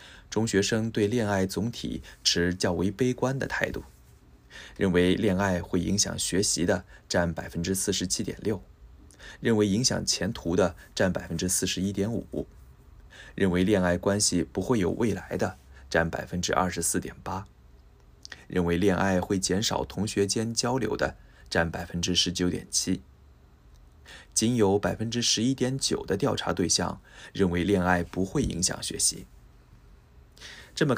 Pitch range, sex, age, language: 85-110 Hz, male, 20-39, Japanese